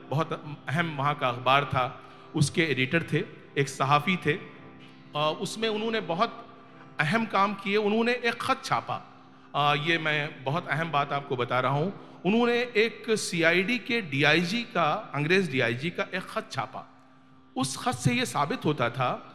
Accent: native